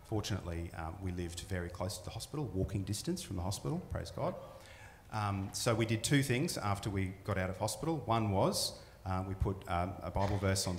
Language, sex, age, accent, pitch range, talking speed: English, male, 30-49, Australian, 90-105 Hz, 210 wpm